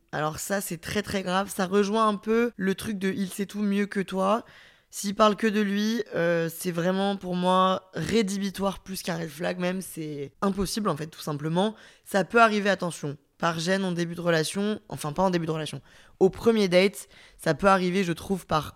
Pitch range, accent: 170-200 Hz, French